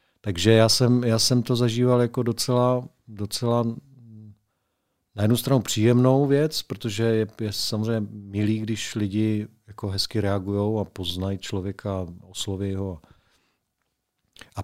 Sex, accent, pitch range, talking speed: male, native, 105-125 Hz, 130 wpm